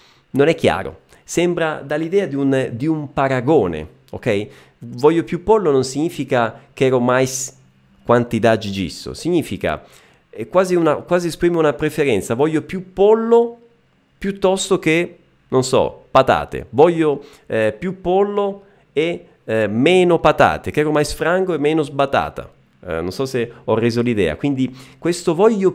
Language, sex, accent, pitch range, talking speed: Italian, male, native, 125-175 Hz, 145 wpm